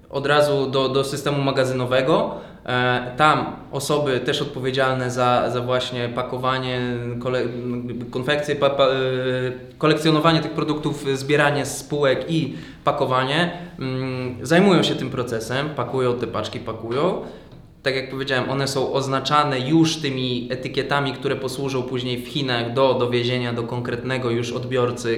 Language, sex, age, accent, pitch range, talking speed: Polish, male, 20-39, native, 120-140 Hz, 120 wpm